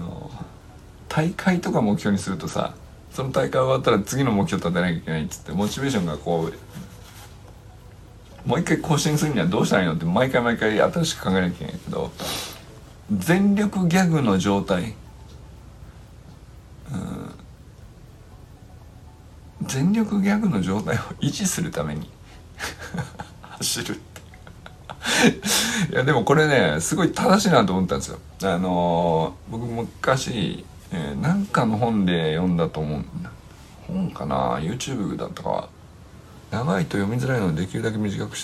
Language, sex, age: Japanese, male, 60-79